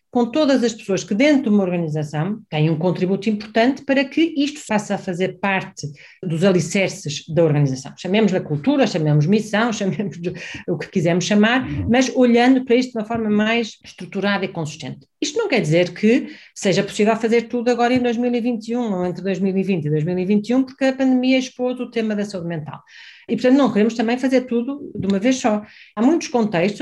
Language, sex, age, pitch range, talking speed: Portuguese, female, 40-59, 180-230 Hz, 190 wpm